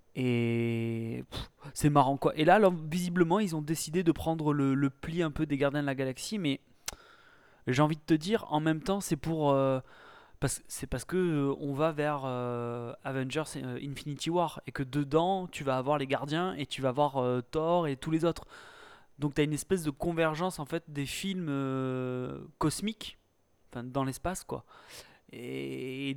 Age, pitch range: 20-39, 130-160 Hz